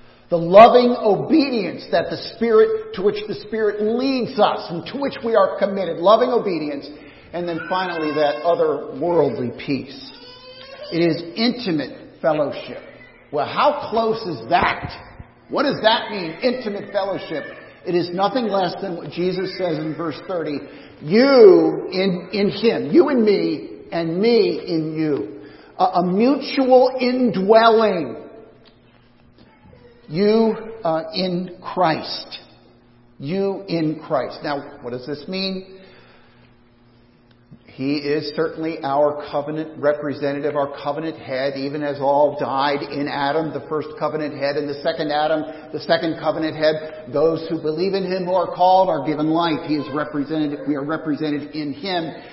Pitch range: 145-205 Hz